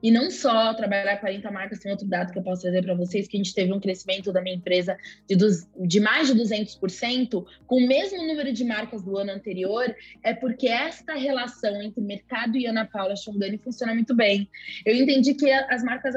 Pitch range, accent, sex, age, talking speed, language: 200-250 Hz, Brazilian, female, 20-39, 210 wpm, Portuguese